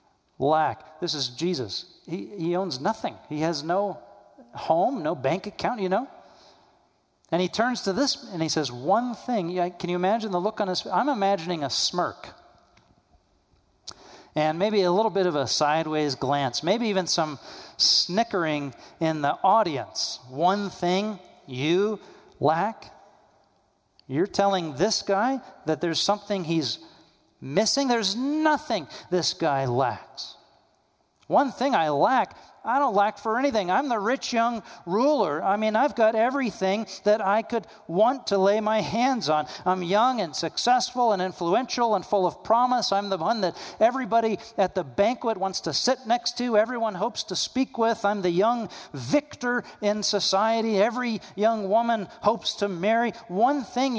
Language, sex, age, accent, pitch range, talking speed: English, male, 40-59, American, 170-230 Hz, 160 wpm